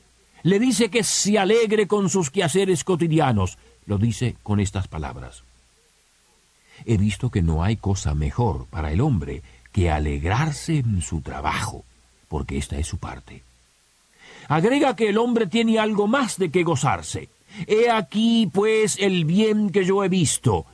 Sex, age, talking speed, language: male, 50-69, 155 wpm, Spanish